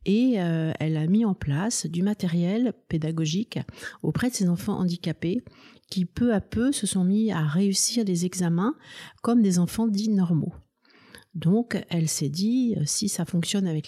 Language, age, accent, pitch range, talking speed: French, 50-69, French, 160-205 Hz, 170 wpm